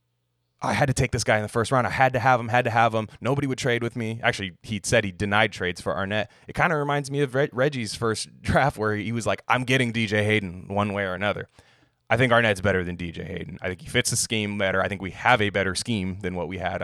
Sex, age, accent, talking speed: male, 20-39, American, 280 wpm